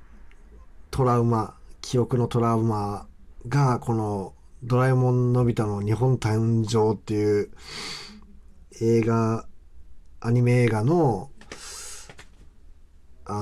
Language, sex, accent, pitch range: Japanese, male, native, 80-130 Hz